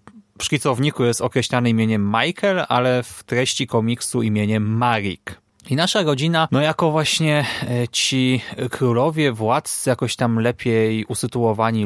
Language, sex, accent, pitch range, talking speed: Polish, male, native, 115-145 Hz, 125 wpm